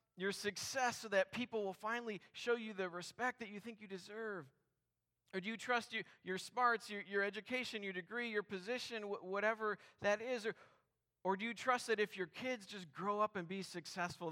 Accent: American